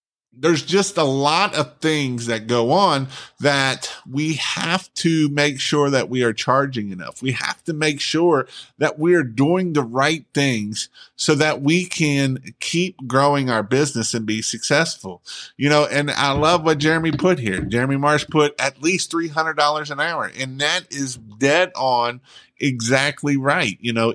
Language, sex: English, male